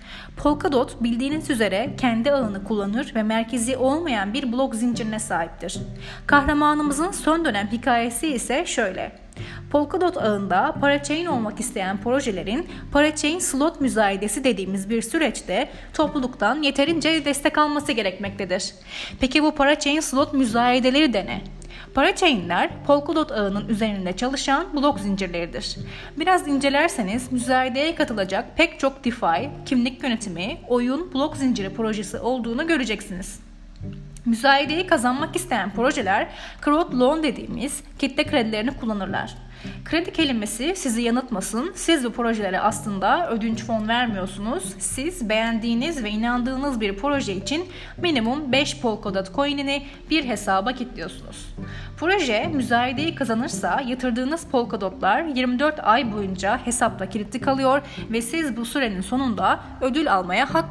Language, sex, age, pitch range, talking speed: Turkish, female, 30-49, 220-290 Hz, 120 wpm